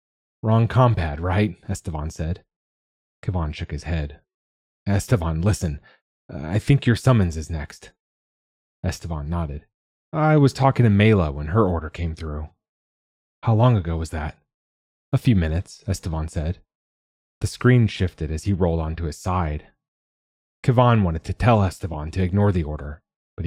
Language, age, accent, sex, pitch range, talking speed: English, 30-49, American, male, 75-105 Hz, 150 wpm